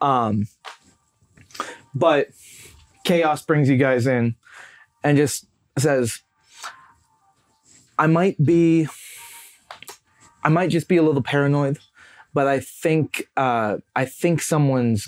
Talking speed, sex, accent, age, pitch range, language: 105 wpm, male, American, 20-39, 115-145 Hz, English